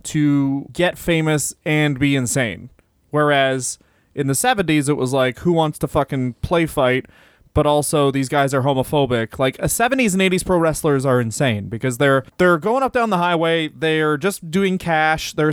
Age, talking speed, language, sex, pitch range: 20-39, 180 wpm, English, male, 145-180 Hz